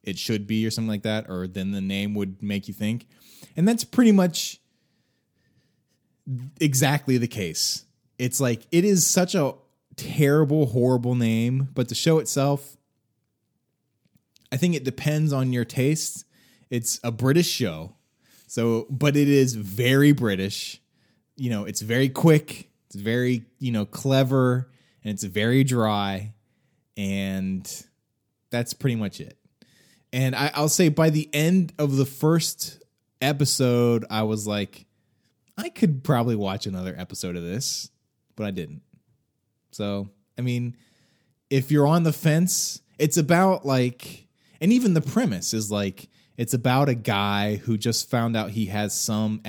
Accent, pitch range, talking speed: American, 105-140 Hz, 150 wpm